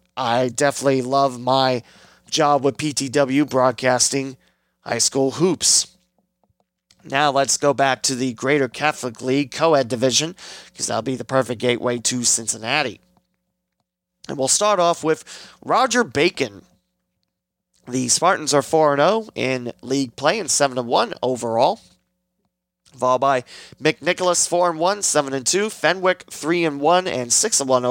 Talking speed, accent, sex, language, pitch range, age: 120 wpm, American, male, English, 115-150 Hz, 30-49